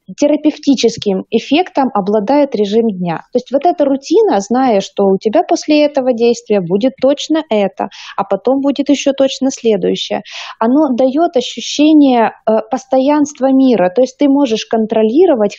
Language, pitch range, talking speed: Russian, 205-275 Hz, 140 wpm